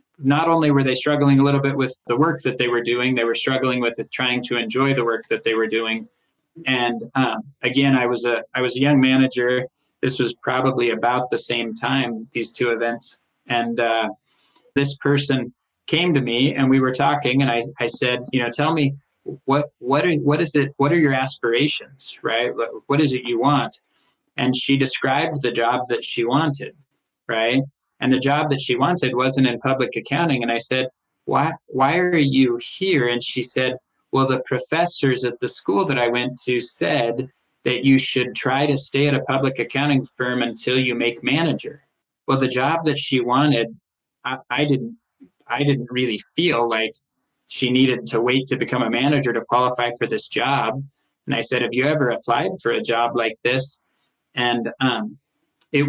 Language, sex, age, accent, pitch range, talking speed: English, male, 20-39, American, 120-140 Hz, 195 wpm